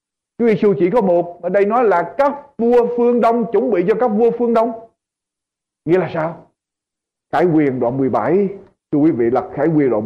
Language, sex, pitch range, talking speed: Vietnamese, male, 175-255 Hz, 205 wpm